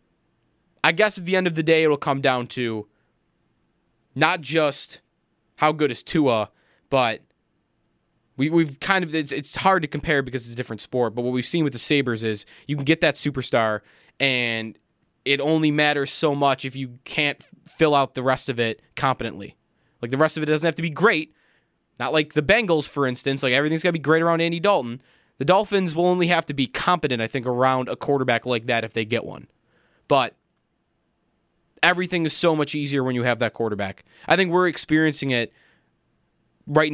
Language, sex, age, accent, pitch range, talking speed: English, male, 20-39, American, 125-165 Hz, 200 wpm